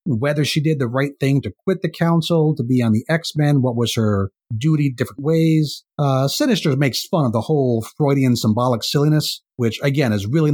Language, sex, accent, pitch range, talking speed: English, male, American, 115-155 Hz, 200 wpm